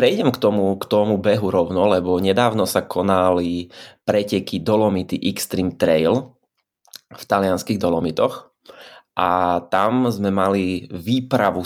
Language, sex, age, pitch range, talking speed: Slovak, male, 20-39, 90-105 Hz, 120 wpm